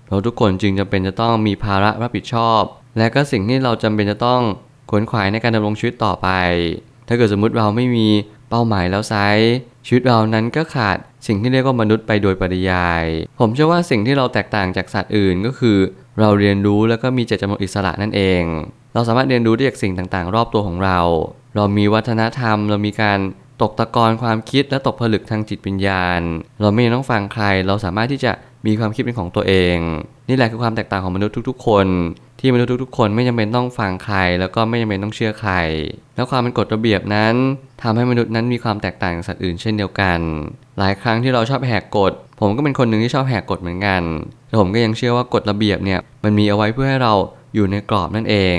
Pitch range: 100-120 Hz